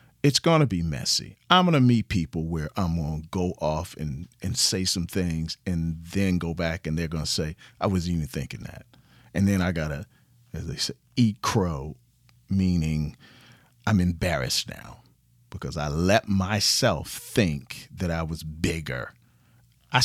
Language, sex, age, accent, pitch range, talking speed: English, male, 40-59, American, 85-140 Hz, 175 wpm